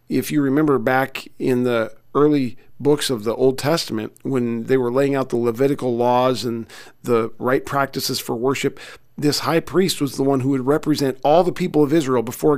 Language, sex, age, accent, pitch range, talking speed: English, male, 40-59, American, 125-150 Hz, 195 wpm